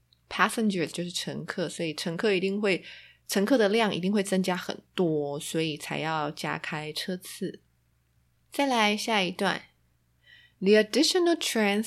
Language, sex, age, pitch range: Chinese, female, 20-39, 175-225 Hz